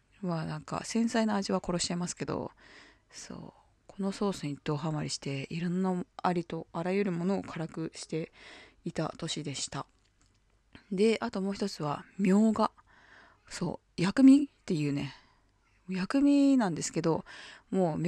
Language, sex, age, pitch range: Japanese, female, 20-39, 150-205 Hz